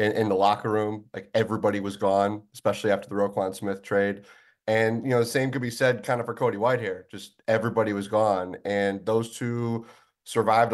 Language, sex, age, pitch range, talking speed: English, male, 30-49, 105-125 Hz, 195 wpm